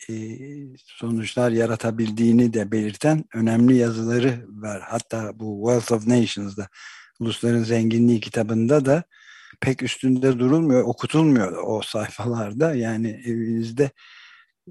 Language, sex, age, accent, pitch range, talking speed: Turkish, male, 60-79, native, 110-130 Hz, 100 wpm